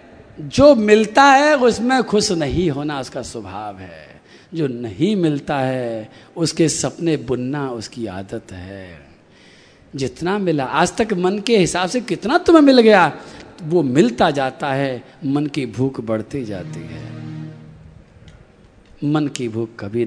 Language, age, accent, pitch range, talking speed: Hindi, 50-69, native, 120-205 Hz, 140 wpm